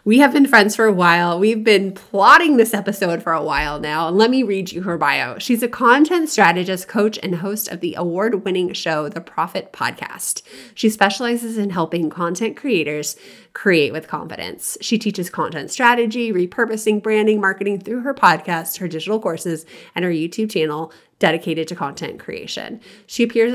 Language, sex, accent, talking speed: English, female, American, 175 wpm